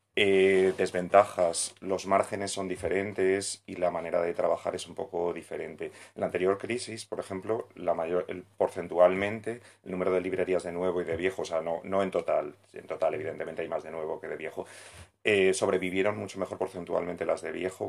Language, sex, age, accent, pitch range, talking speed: Spanish, male, 30-49, Spanish, 90-100 Hz, 185 wpm